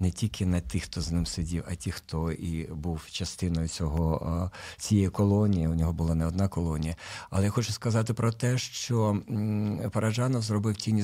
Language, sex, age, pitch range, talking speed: Ukrainian, male, 50-69, 95-110 Hz, 180 wpm